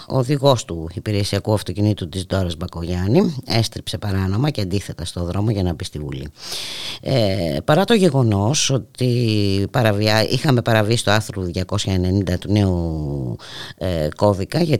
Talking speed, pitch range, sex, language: 140 wpm, 95-130 Hz, female, Greek